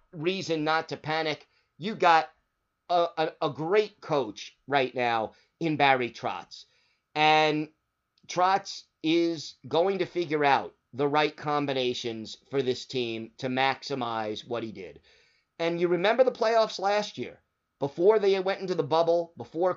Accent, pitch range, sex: American, 130-160 Hz, male